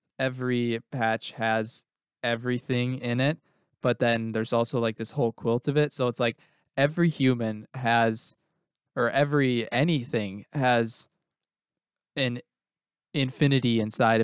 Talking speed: 120 wpm